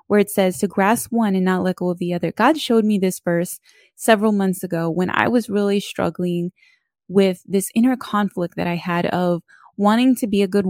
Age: 20-39